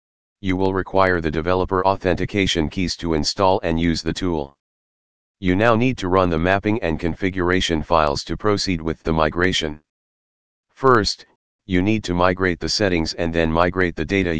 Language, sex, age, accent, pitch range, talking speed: English, male, 40-59, American, 80-95 Hz, 165 wpm